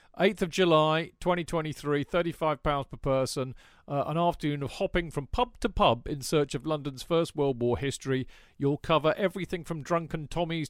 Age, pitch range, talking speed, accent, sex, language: 40-59, 130-165 Hz, 170 wpm, British, male, English